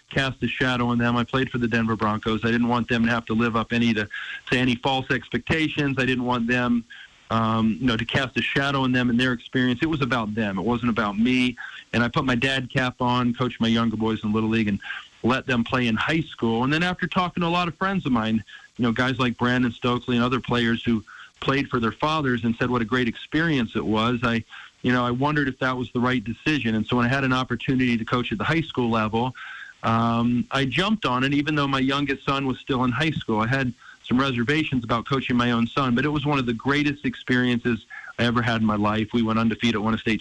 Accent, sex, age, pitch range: American, male, 40-59, 115-135 Hz